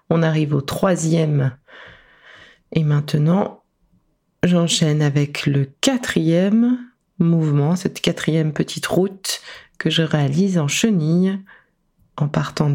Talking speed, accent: 105 wpm, French